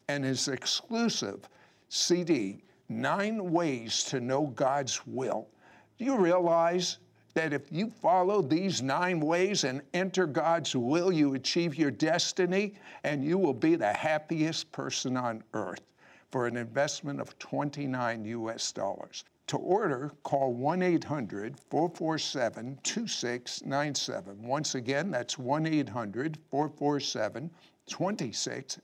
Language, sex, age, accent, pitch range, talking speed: English, male, 60-79, American, 135-180 Hz, 120 wpm